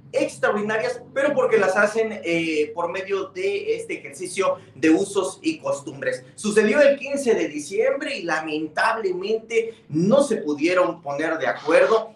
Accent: Mexican